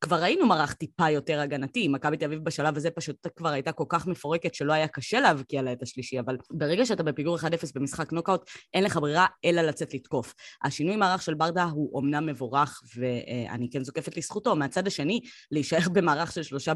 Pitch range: 145-185 Hz